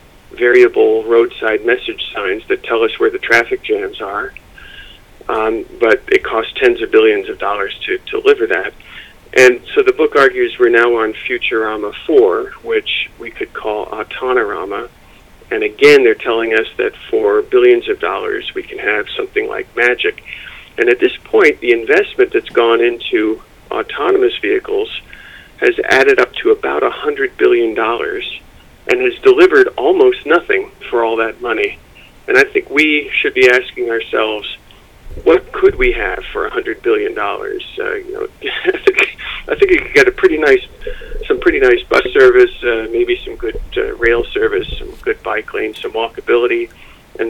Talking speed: 165 wpm